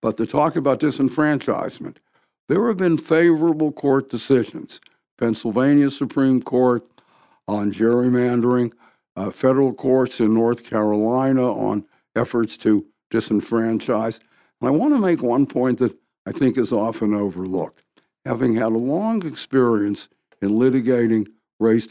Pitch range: 110-135 Hz